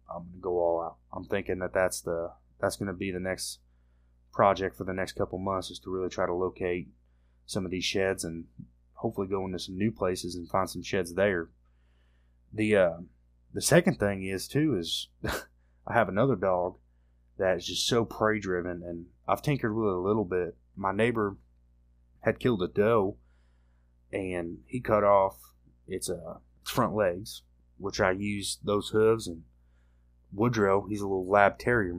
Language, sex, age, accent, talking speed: English, male, 20-39, American, 180 wpm